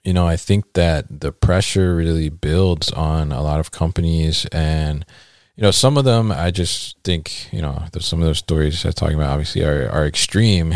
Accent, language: American, English